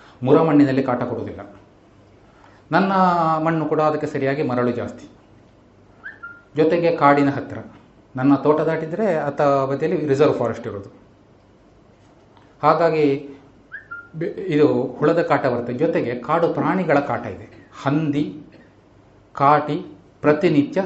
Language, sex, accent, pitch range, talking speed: Kannada, male, native, 110-155 Hz, 100 wpm